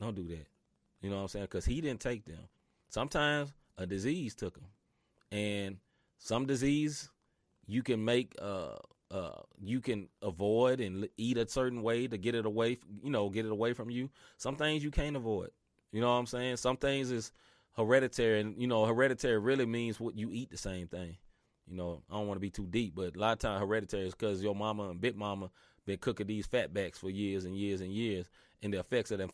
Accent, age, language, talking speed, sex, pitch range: American, 30-49, English, 225 wpm, male, 100-130 Hz